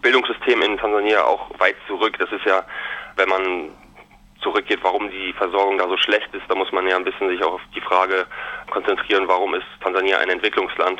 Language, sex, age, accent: German, male, 20-39, German